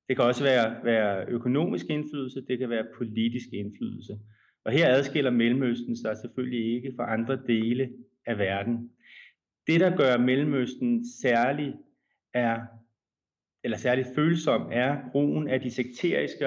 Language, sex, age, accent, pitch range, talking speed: Danish, male, 30-49, native, 115-135 Hz, 140 wpm